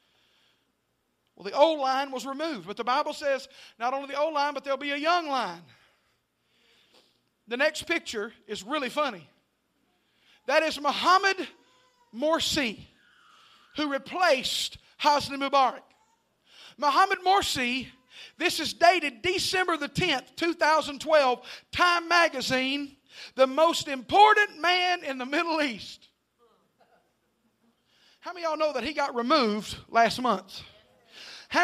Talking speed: 125 wpm